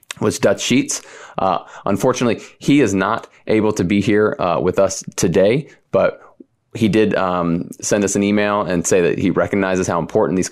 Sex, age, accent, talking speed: male, 30-49, American, 185 wpm